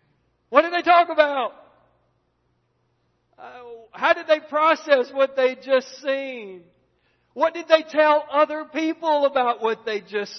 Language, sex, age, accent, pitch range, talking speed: English, male, 50-69, American, 135-205 Hz, 140 wpm